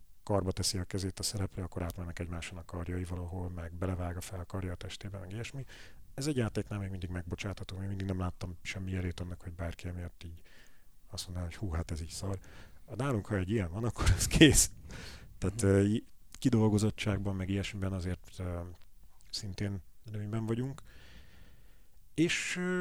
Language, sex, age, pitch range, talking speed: Hungarian, male, 40-59, 90-115 Hz, 170 wpm